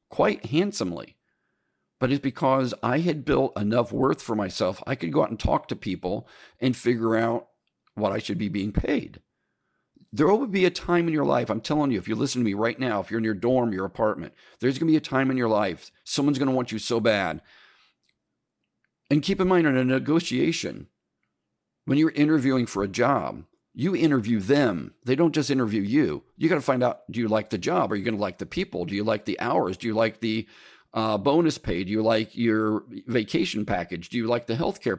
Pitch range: 110-150 Hz